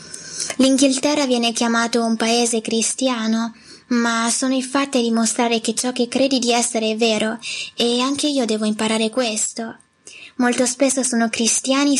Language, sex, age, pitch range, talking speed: Italian, female, 10-29, 230-255 Hz, 150 wpm